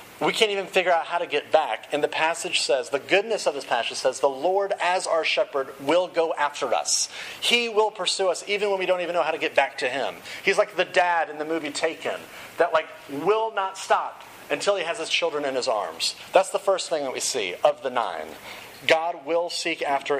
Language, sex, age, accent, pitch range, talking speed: English, male, 40-59, American, 160-205 Hz, 235 wpm